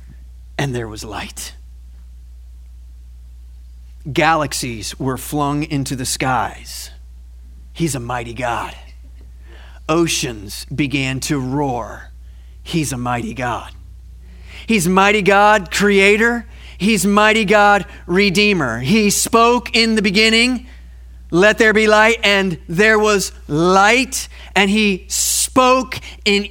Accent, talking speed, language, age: American, 110 wpm, English, 30-49